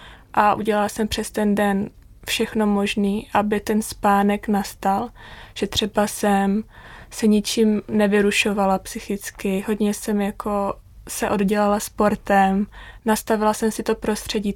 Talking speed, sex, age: 125 wpm, female, 20-39